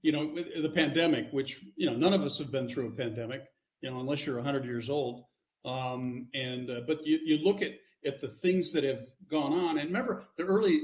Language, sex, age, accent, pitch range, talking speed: English, male, 50-69, American, 135-190 Hz, 225 wpm